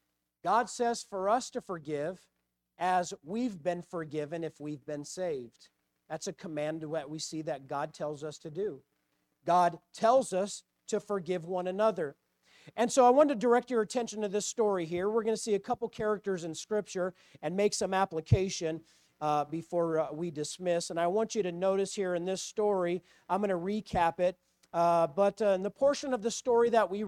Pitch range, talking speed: 175-250 Hz, 195 wpm